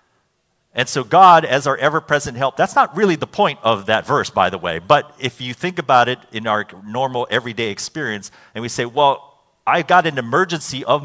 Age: 40-59